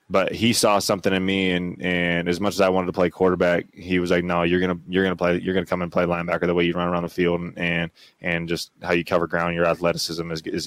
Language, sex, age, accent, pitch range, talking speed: English, male, 20-39, American, 85-90 Hz, 280 wpm